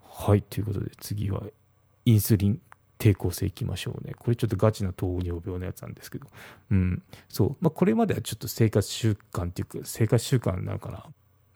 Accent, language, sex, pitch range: native, Japanese, male, 100-120 Hz